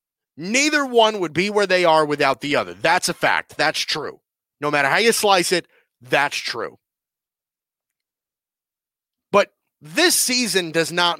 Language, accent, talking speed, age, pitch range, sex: English, American, 150 wpm, 30-49, 180-240 Hz, male